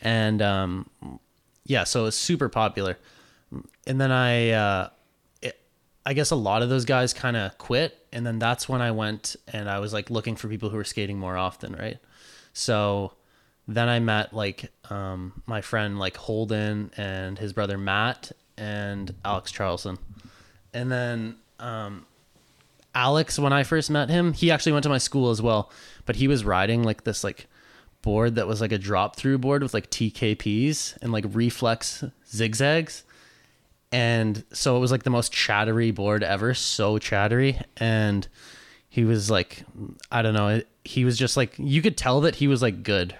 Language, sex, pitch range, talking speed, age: English, male, 105-125 Hz, 180 wpm, 20-39